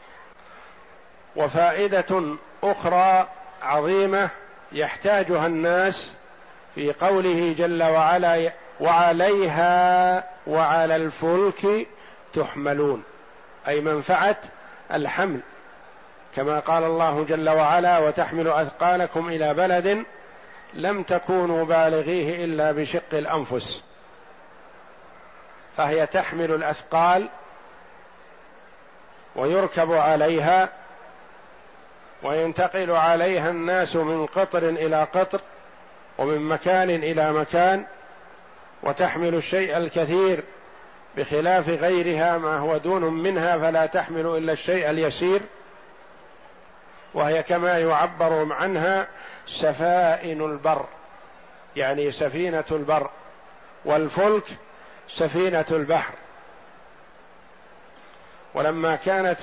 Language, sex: Arabic, male